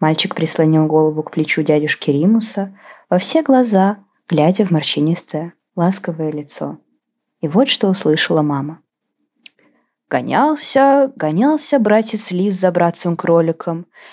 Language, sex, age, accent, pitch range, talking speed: Ukrainian, female, 20-39, native, 170-255 Hz, 115 wpm